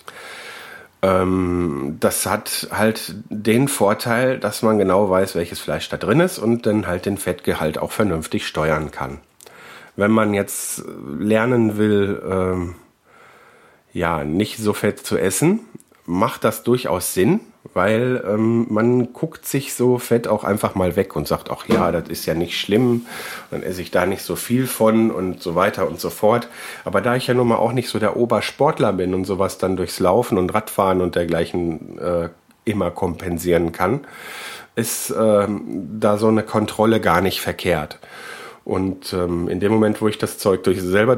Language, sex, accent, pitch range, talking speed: German, male, German, 95-120 Hz, 170 wpm